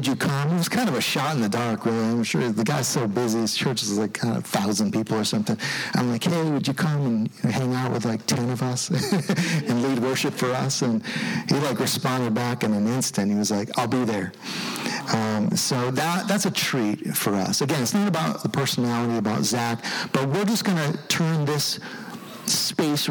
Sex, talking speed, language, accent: male, 225 wpm, English, American